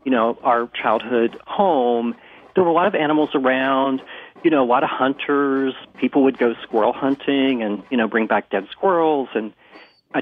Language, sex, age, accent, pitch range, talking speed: English, male, 40-59, American, 115-145 Hz, 190 wpm